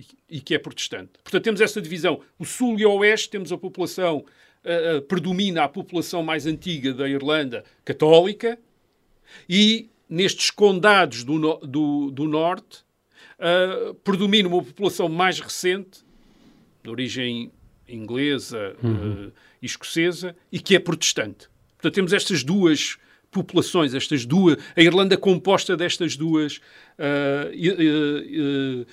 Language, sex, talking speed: Portuguese, male, 130 wpm